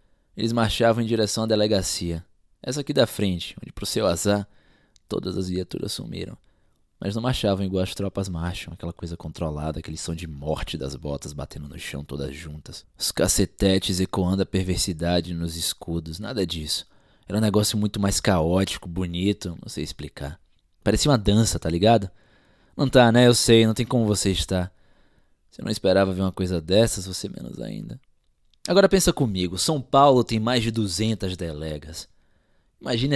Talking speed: 170 wpm